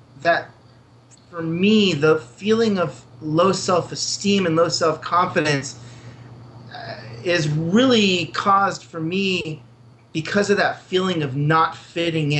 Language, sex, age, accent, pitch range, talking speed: English, male, 30-49, American, 125-165 Hz, 110 wpm